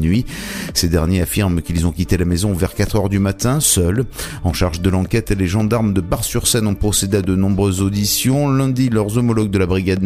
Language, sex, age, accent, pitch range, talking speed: French, male, 30-49, French, 95-120 Hz, 205 wpm